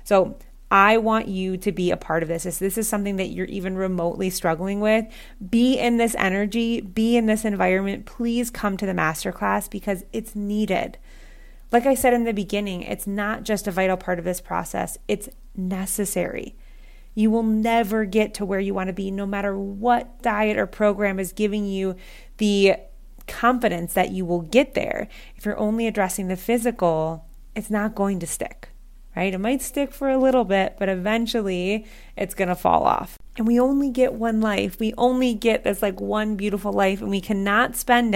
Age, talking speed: 30-49, 195 wpm